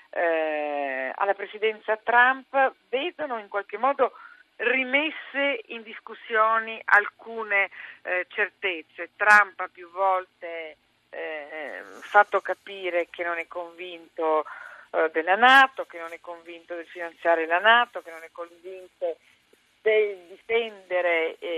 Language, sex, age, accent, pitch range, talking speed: Italian, female, 50-69, native, 180-235 Hz, 110 wpm